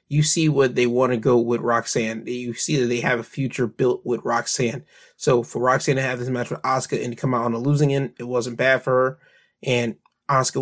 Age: 20-39